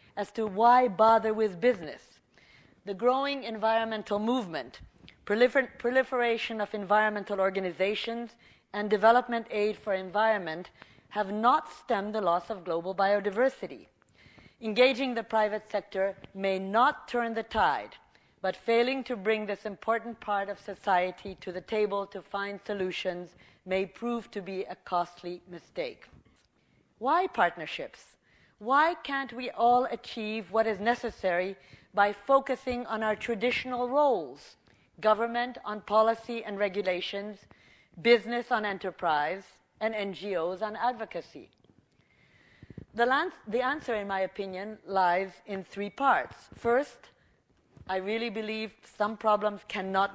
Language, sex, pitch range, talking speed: English, female, 195-240 Hz, 125 wpm